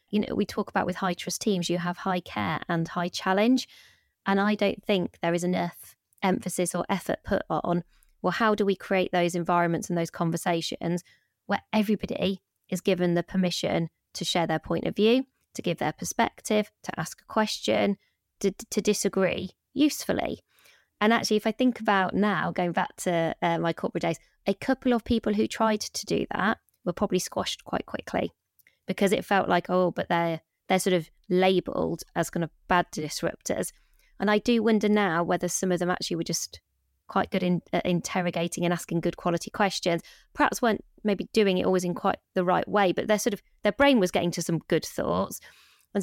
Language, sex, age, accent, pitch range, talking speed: English, female, 20-39, British, 175-210 Hz, 200 wpm